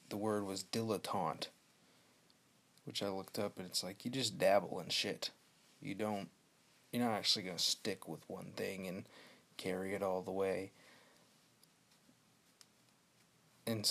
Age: 30-49